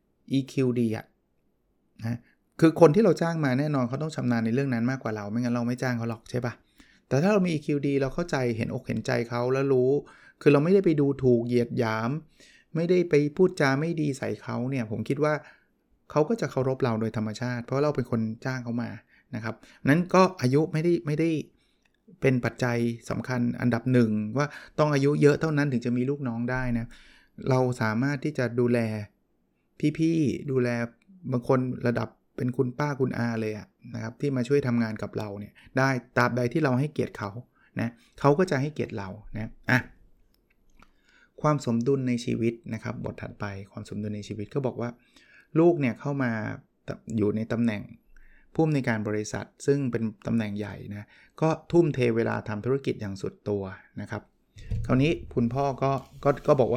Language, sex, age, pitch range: Thai, male, 20-39, 115-145 Hz